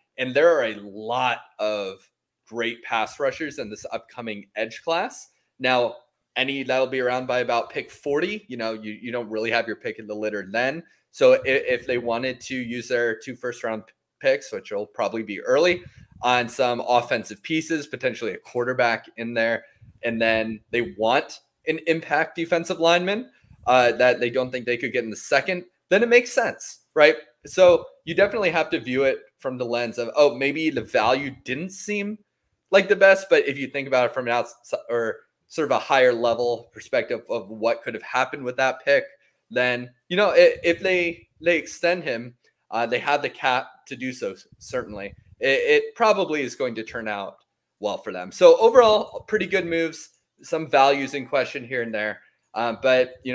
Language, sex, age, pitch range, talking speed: English, male, 20-39, 120-175 Hz, 195 wpm